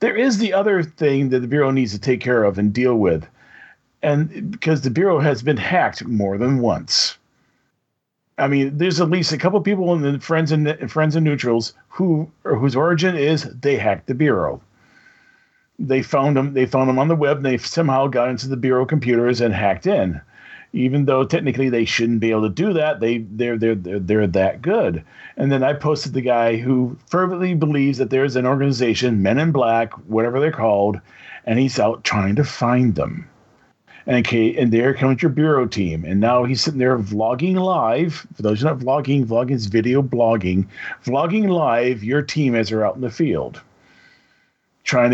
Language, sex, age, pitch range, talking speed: English, male, 40-59, 115-150 Hz, 200 wpm